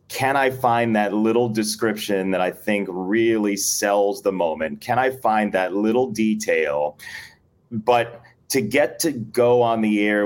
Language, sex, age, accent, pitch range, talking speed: English, male, 30-49, American, 100-115 Hz, 160 wpm